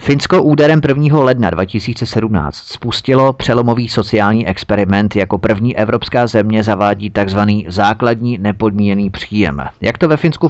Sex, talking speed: male, 125 wpm